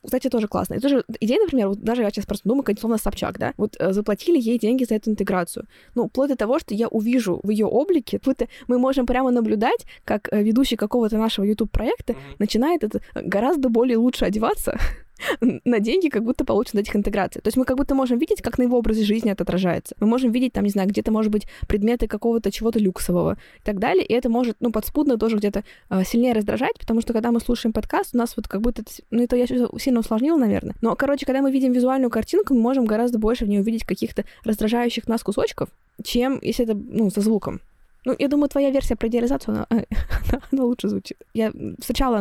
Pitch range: 210-250 Hz